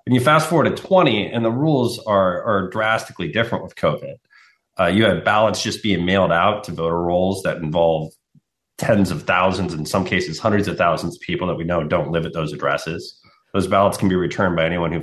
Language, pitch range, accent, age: English, 90-115 Hz, American, 30-49